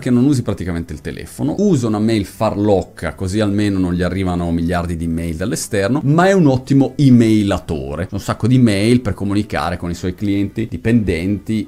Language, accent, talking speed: Italian, native, 180 wpm